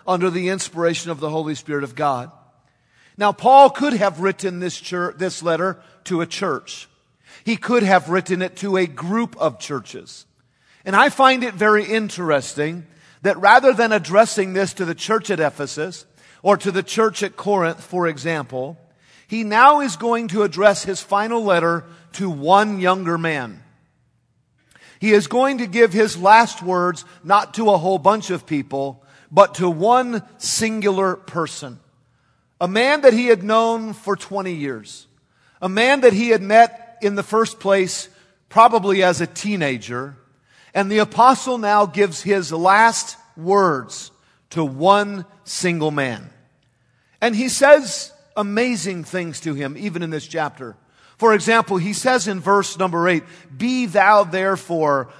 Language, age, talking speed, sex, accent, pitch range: English, 50-69, 155 wpm, male, American, 160-210 Hz